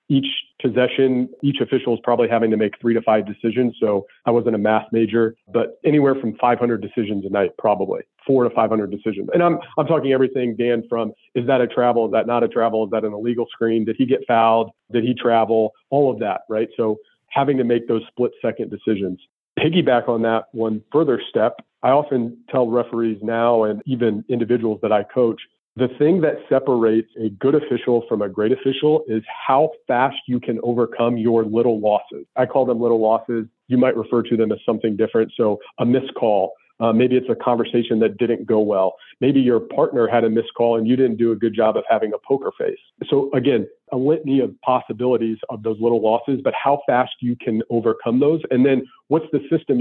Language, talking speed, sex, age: English, 210 wpm, male, 40-59